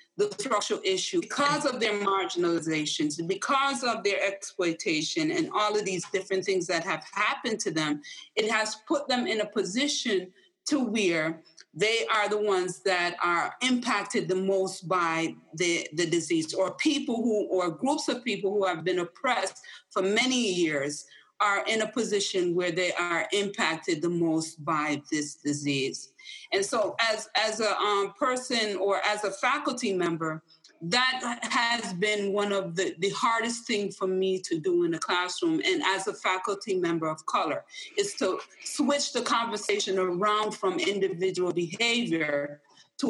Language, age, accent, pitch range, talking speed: English, 30-49, American, 175-240 Hz, 160 wpm